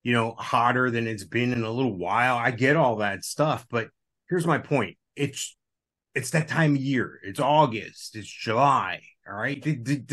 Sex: male